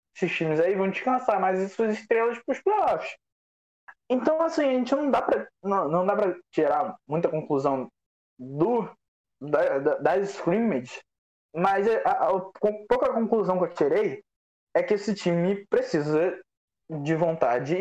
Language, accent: Portuguese, Brazilian